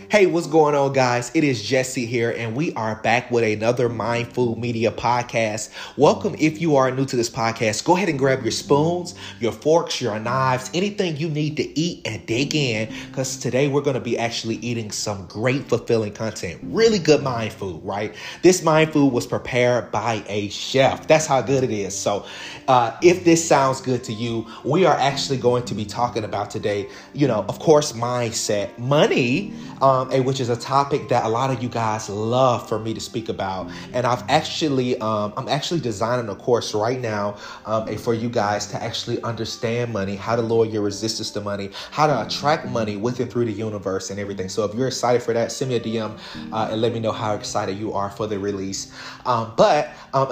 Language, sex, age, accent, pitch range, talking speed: English, male, 30-49, American, 110-140 Hz, 215 wpm